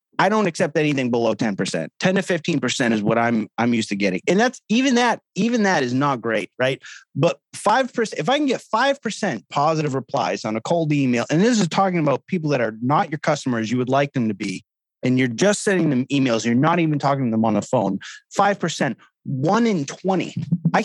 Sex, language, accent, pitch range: male, English, American, 125-190 Hz